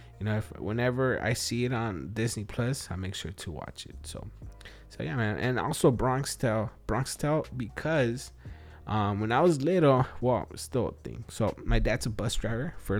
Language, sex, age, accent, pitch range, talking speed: English, male, 20-39, American, 105-130 Hz, 200 wpm